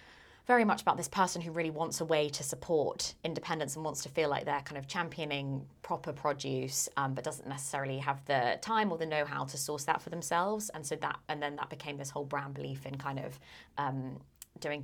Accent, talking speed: British, 225 wpm